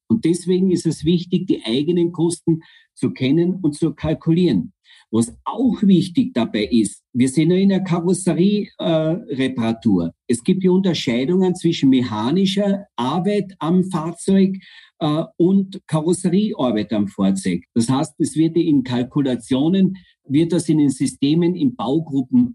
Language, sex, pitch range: German, male, 130-185 Hz